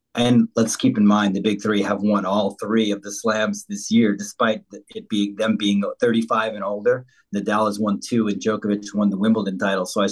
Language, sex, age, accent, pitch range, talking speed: English, male, 30-49, American, 100-135 Hz, 220 wpm